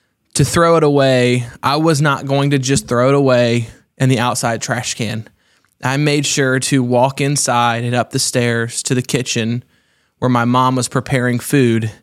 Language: English